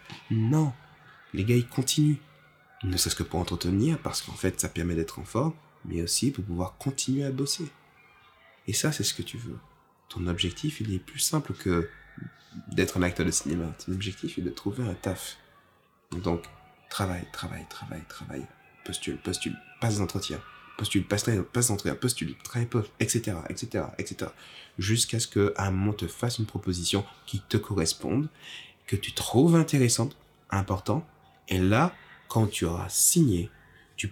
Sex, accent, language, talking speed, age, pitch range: male, French, French, 165 wpm, 20-39, 90-120 Hz